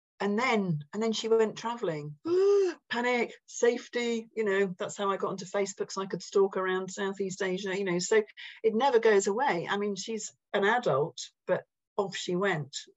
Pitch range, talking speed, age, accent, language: 160-200 Hz, 185 wpm, 40-59, British, English